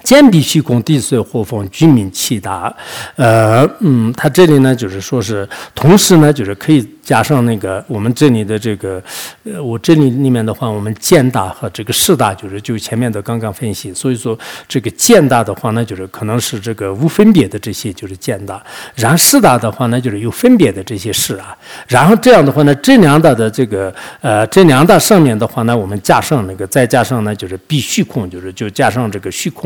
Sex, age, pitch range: male, 50-69, 105-145 Hz